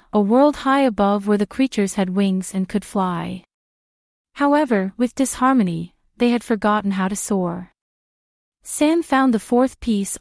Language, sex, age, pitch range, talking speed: English, female, 30-49, 195-245 Hz, 155 wpm